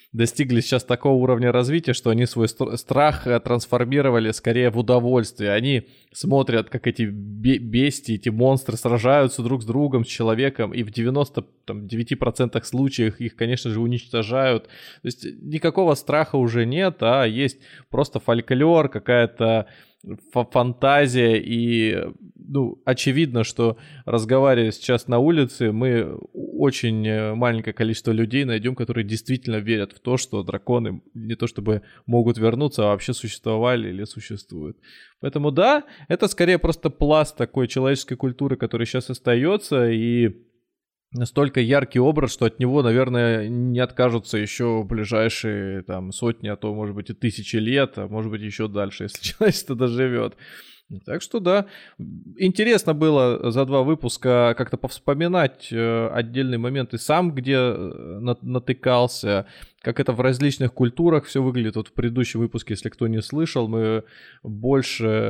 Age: 20-39